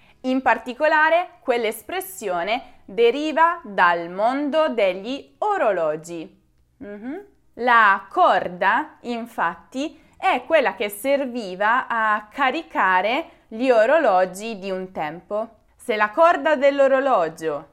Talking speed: 90 wpm